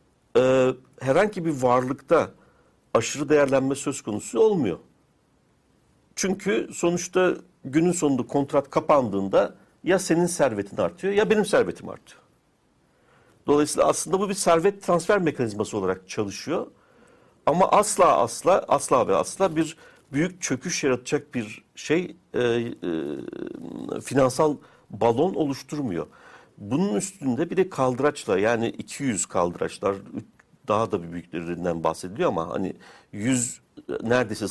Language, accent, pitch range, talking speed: Turkish, native, 115-170 Hz, 110 wpm